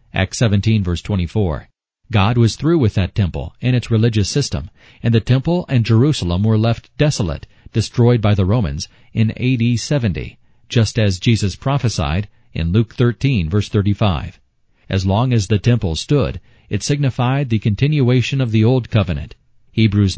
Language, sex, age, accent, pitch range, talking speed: English, male, 40-59, American, 100-120 Hz, 160 wpm